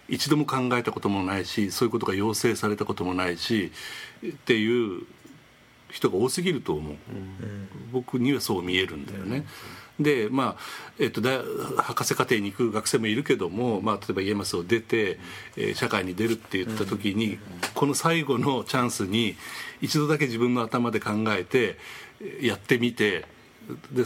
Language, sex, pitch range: Japanese, male, 95-120 Hz